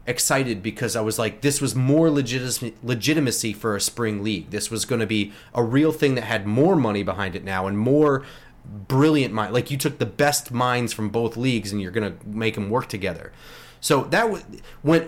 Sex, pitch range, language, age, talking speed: male, 120-160 Hz, English, 30-49, 210 wpm